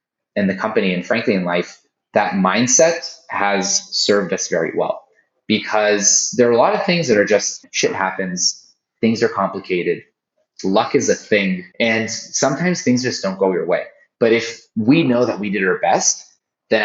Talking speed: 180 wpm